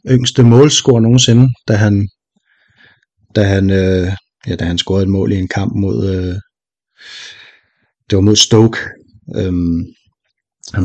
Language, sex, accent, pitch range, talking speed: Danish, male, native, 95-115 Hz, 140 wpm